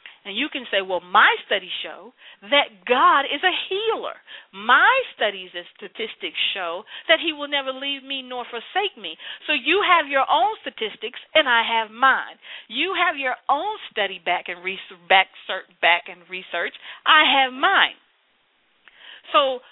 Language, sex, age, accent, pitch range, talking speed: English, female, 40-59, American, 195-275 Hz, 150 wpm